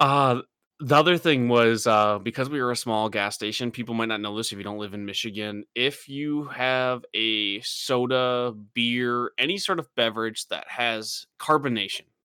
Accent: American